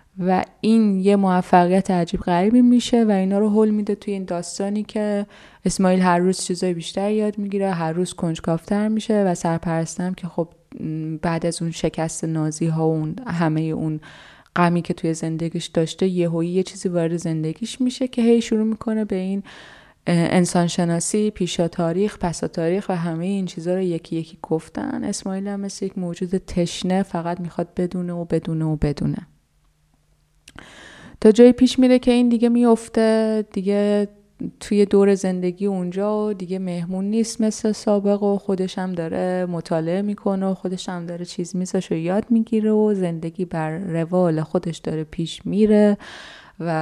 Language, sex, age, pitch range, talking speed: Persian, female, 20-39, 170-205 Hz, 160 wpm